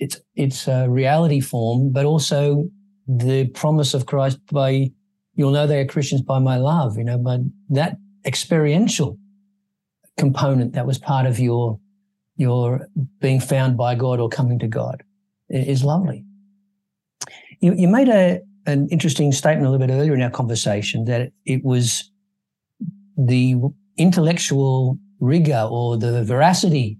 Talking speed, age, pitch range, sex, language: 145 wpm, 50-69, 130-185 Hz, male, English